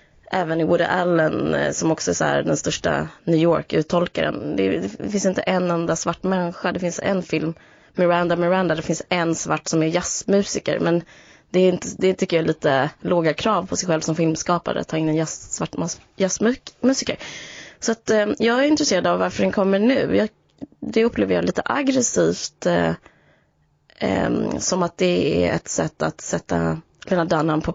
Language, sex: Swedish, female